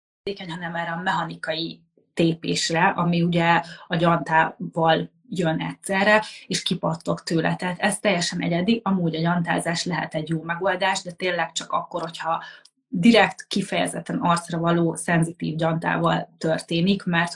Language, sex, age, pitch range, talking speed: Hungarian, female, 30-49, 165-190 Hz, 130 wpm